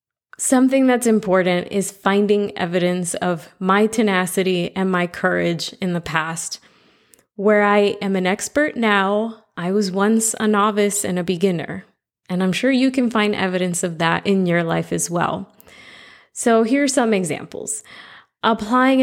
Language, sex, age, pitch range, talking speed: English, female, 20-39, 180-210 Hz, 155 wpm